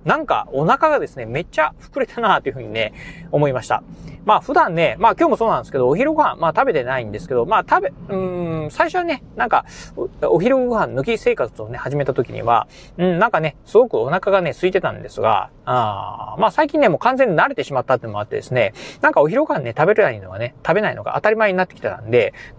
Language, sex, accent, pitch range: Japanese, male, native, 135-230 Hz